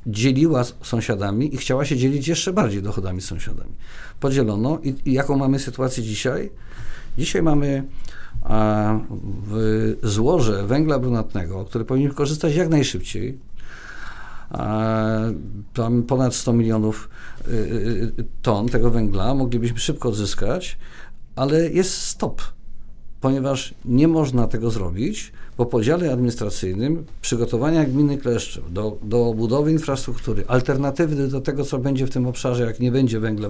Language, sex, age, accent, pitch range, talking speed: Polish, male, 50-69, native, 110-145 Hz, 130 wpm